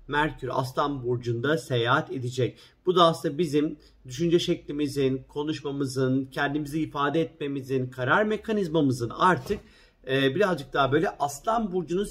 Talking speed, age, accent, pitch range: 120 wpm, 50-69, native, 125-160 Hz